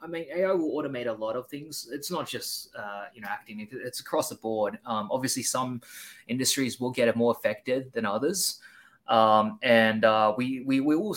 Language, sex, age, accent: English, male, 20-39, Australian